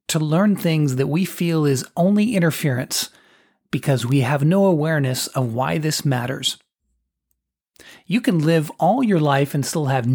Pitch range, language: 140-185 Hz, English